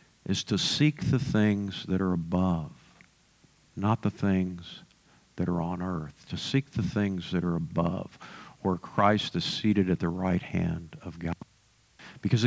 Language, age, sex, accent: English, 50-69, male, American